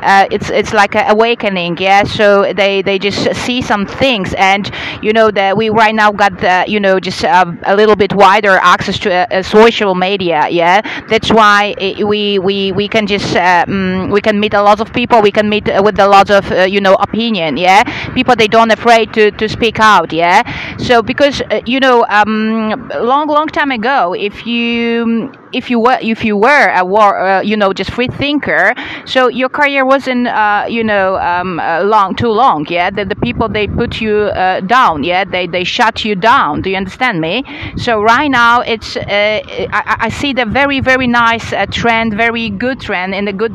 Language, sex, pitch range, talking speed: English, female, 200-235 Hz, 210 wpm